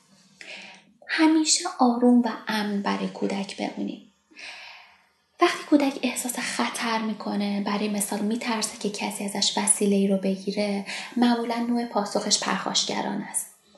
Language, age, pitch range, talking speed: Persian, 20-39, 200-255 Hz, 115 wpm